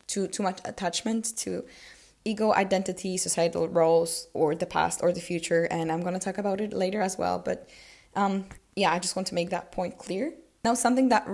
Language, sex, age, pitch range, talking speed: English, female, 10-29, 175-205 Hz, 205 wpm